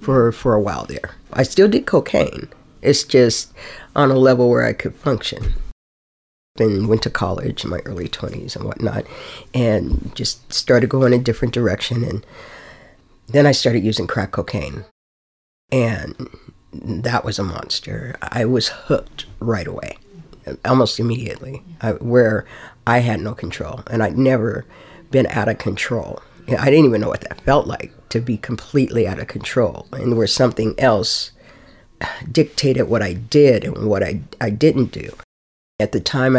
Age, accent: 50-69, American